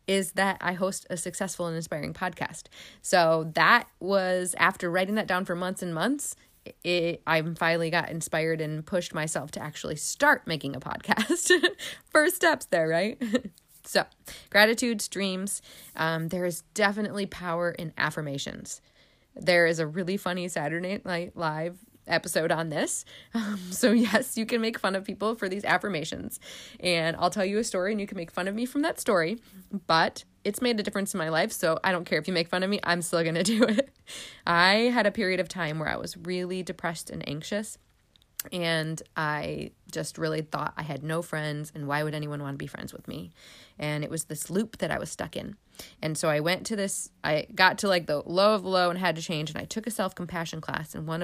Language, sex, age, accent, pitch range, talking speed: English, female, 20-39, American, 160-200 Hz, 210 wpm